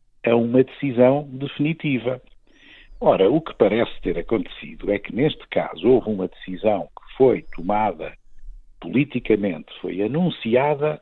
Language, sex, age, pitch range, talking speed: Portuguese, male, 50-69, 105-135 Hz, 125 wpm